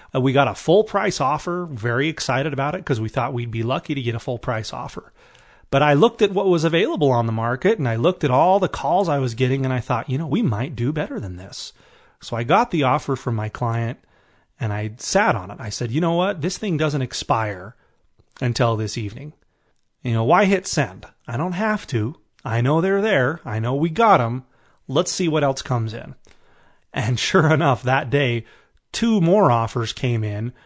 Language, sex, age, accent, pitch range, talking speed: English, male, 30-49, American, 120-160 Hz, 220 wpm